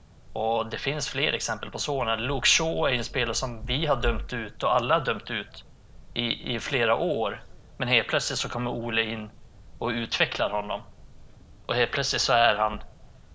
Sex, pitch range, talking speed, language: male, 115-130 Hz, 190 wpm, Swedish